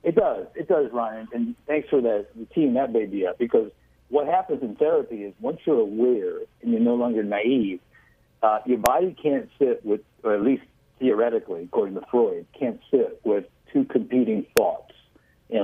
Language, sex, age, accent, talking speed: English, male, 60-79, American, 190 wpm